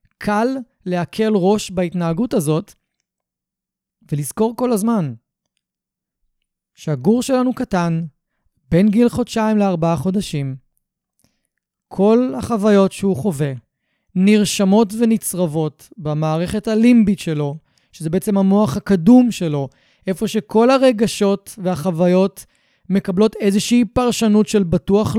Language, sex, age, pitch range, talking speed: Hebrew, male, 20-39, 180-230 Hz, 95 wpm